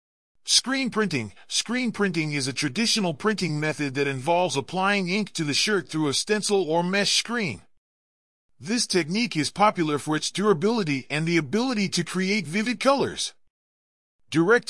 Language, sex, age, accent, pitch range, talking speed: English, male, 40-59, American, 150-210 Hz, 150 wpm